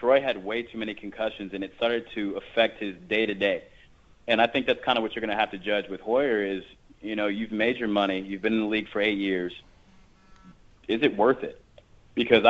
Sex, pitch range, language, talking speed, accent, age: male, 100-120 Hz, English, 230 wpm, American, 30-49